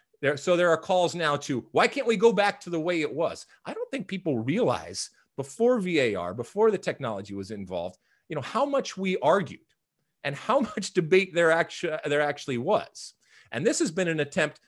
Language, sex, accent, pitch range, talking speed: English, male, American, 145-210 Hz, 205 wpm